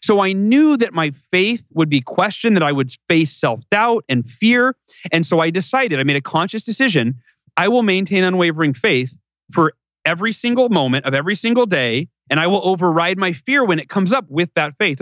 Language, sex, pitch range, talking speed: English, male, 140-190 Hz, 205 wpm